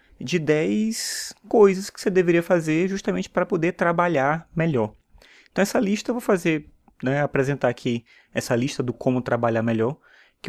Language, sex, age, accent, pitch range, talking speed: Portuguese, male, 20-39, Brazilian, 125-170 Hz, 160 wpm